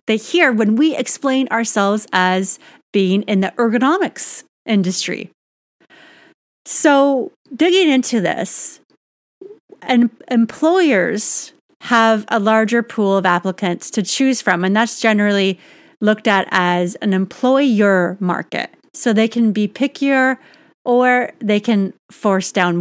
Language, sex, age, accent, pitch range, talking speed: English, female, 30-49, American, 190-250 Hz, 125 wpm